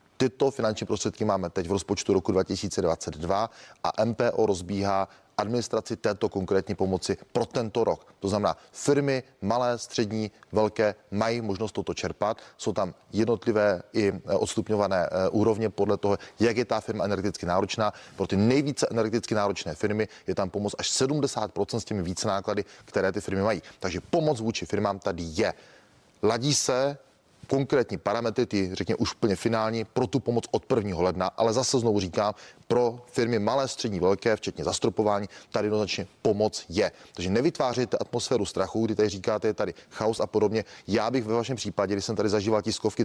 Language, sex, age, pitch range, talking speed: Czech, male, 30-49, 100-120 Hz, 170 wpm